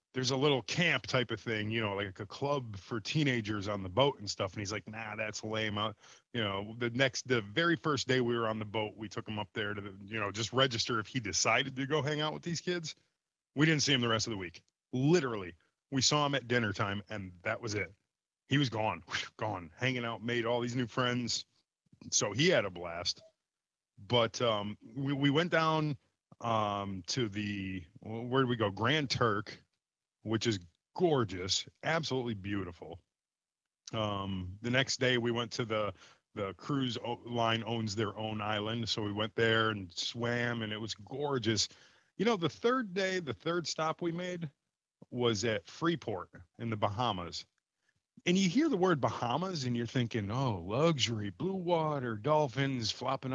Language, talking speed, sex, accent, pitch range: English, 190 wpm, male, American, 110-140 Hz